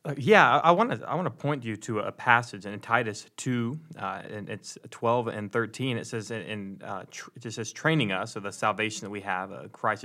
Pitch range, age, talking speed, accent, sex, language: 105-130 Hz, 20-39, 245 wpm, American, male, English